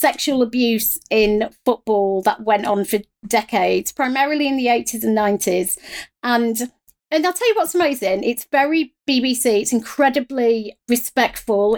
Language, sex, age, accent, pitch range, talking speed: English, female, 40-59, British, 215-265 Hz, 145 wpm